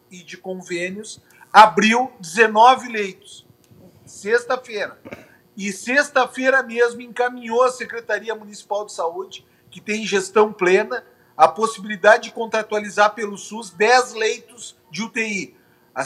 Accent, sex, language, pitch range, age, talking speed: Brazilian, male, Portuguese, 190-245 Hz, 50-69, 115 wpm